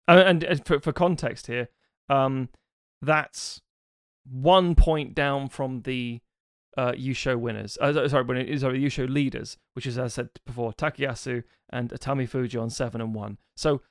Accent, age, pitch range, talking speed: British, 30-49, 120-150 Hz, 155 wpm